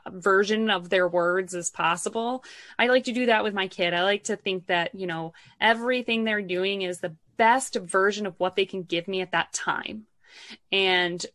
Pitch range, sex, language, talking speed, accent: 180-230 Hz, female, English, 200 wpm, American